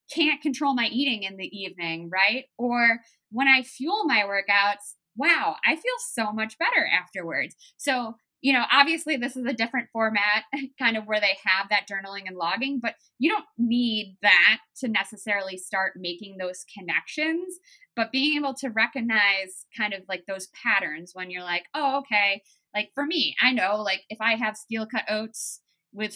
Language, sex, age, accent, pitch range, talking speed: English, female, 20-39, American, 195-255 Hz, 180 wpm